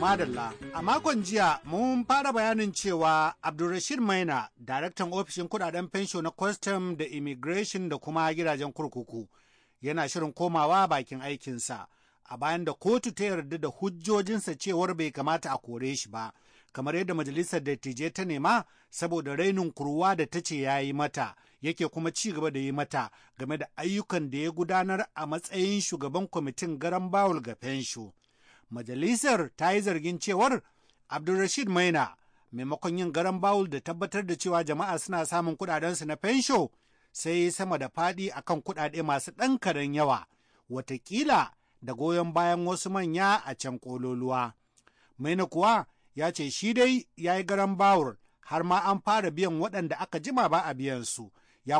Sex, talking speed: male, 140 wpm